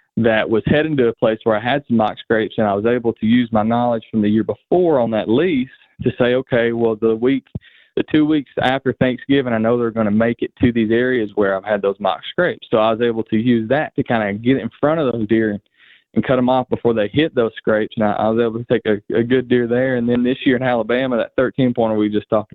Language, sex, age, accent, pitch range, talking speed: English, male, 20-39, American, 110-130 Hz, 275 wpm